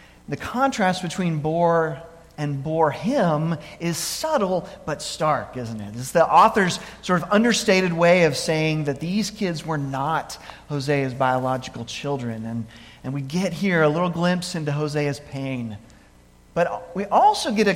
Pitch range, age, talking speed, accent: 140-190 Hz, 40-59, 155 wpm, American